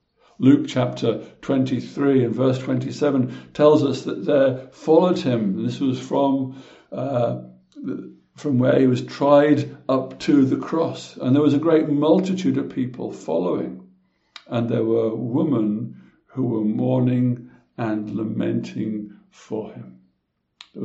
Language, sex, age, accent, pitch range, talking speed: English, male, 60-79, British, 105-140 Hz, 130 wpm